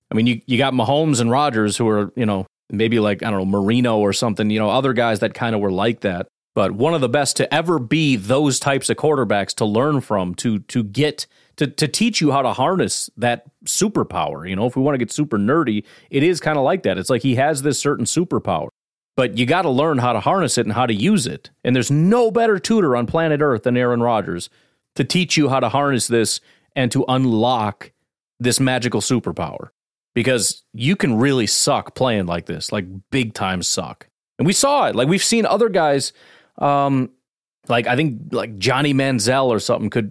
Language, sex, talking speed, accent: English, male, 220 wpm, American